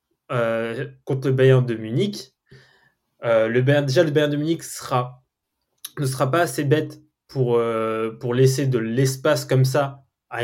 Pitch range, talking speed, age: 125-160 Hz, 160 wpm, 20-39